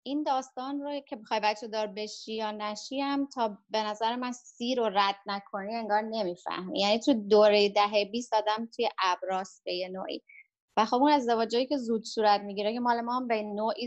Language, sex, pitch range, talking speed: Persian, female, 200-240 Hz, 190 wpm